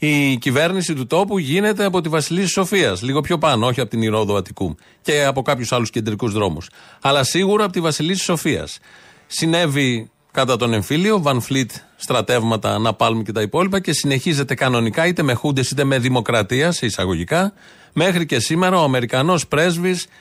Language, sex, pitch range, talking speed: Greek, male, 115-160 Hz, 170 wpm